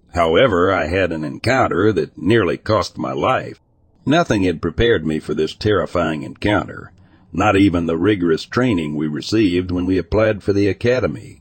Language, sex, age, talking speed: English, male, 60-79, 165 wpm